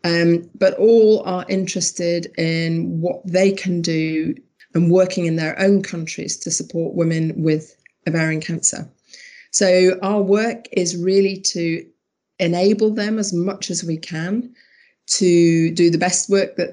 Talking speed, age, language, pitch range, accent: 145 wpm, 30-49, English, 165-195 Hz, British